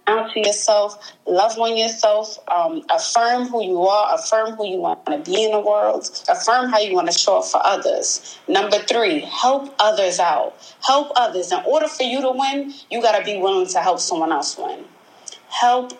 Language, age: English, 30-49